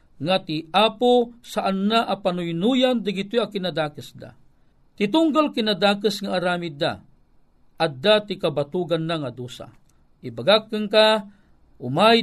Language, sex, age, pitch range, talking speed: Filipino, male, 50-69, 170-225 Hz, 135 wpm